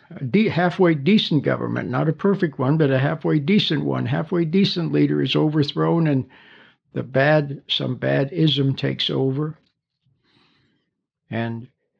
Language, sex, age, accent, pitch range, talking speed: English, male, 60-79, American, 130-175 Hz, 140 wpm